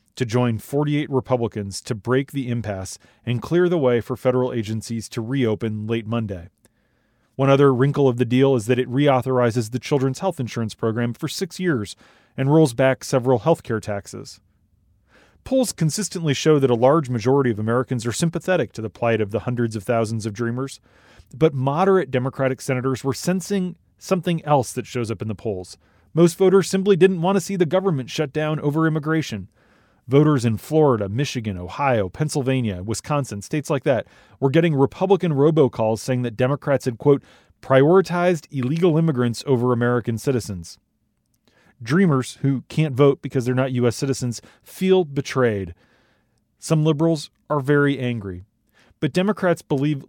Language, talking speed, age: English, 165 wpm, 30-49